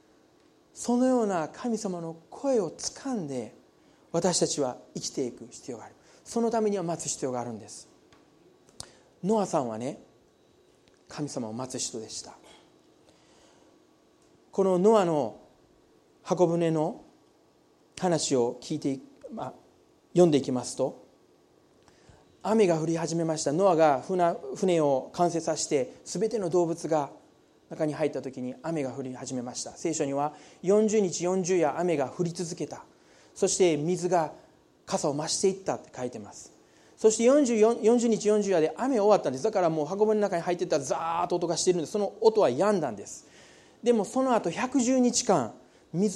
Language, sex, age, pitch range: Japanese, male, 40-59, 160-215 Hz